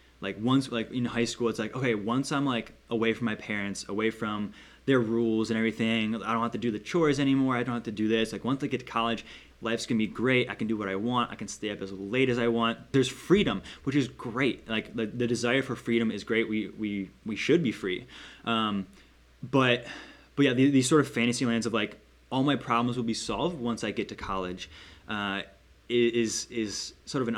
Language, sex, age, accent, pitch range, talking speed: English, male, 10-29, American, 105-130 Hz, 240 wpm